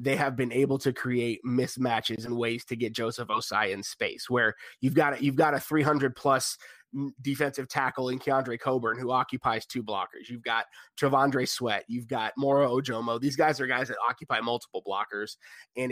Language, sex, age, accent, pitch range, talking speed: English, male, 30-49, American, 125-150 Hz, 175 wpm